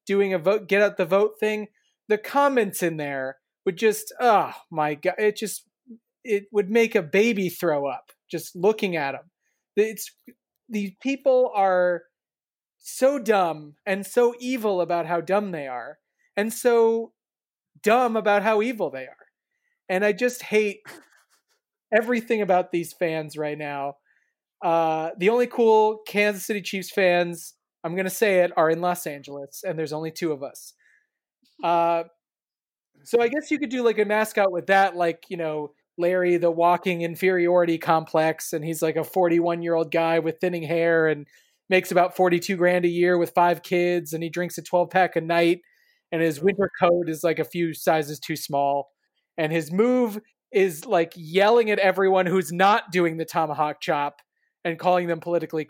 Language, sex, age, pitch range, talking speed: English, male, 30-49, 165-210 Hz, 175 wpm